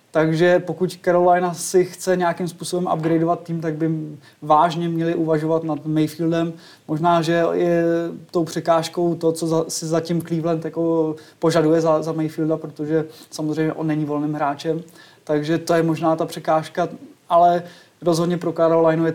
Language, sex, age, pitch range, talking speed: Czech, male, 20-39, 155-170 Hz, 155 wpm